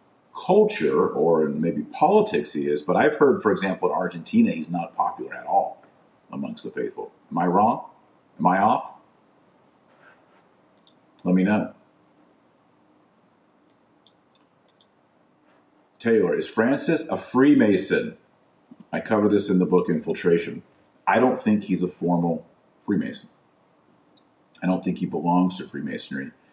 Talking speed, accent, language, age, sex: 125 wpm, American, English, 40-59, male